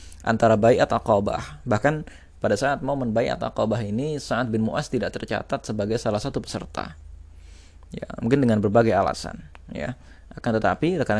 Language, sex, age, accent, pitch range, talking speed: Indonesian, male, 20-39, native, 105-120 Hz, 155 wpm